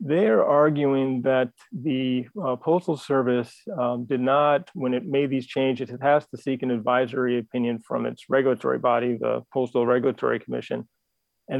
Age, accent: 30-49, American